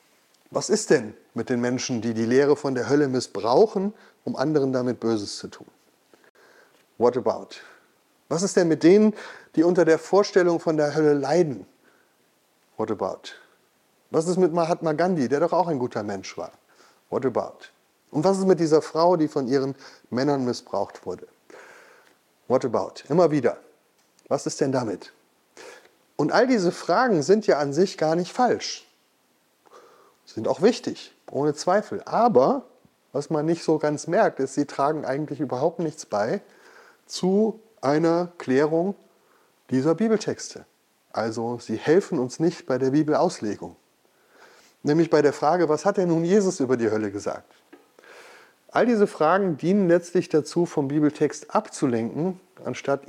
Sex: male